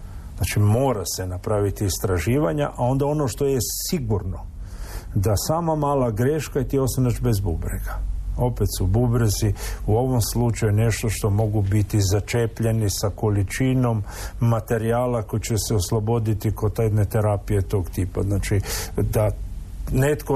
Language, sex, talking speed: Croatian, male, 135 wpm